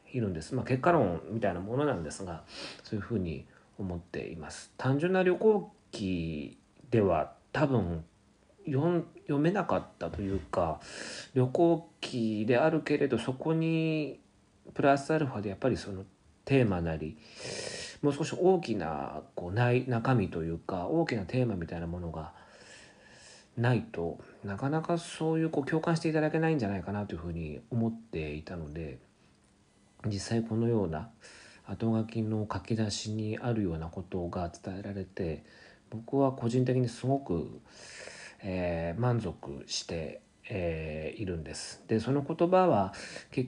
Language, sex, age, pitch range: Japanese, male, 40-59, 95-145 Hz